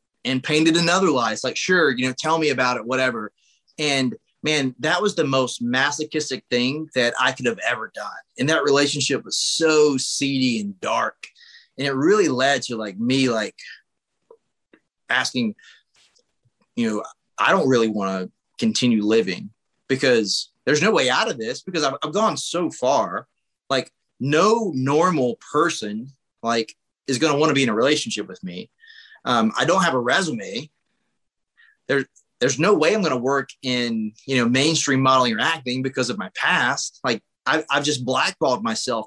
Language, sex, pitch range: English, male, 125-165 Hz